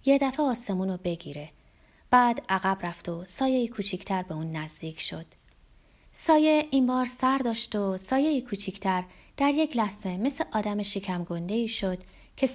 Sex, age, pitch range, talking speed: female, 30-49, 175-250 Hz, 145 wpm